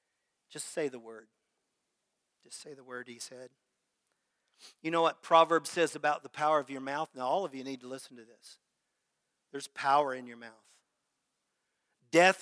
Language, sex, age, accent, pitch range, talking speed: English, male, 40-59, American, 140-180 Hz, 175 wpm